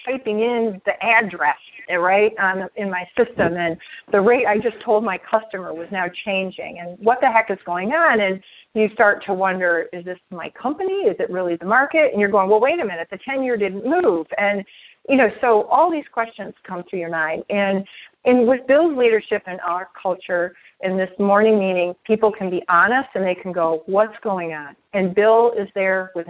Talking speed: 210 wpm